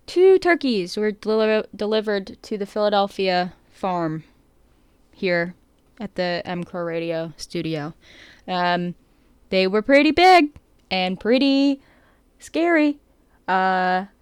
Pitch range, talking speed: 180-250 Hz, 105 wpm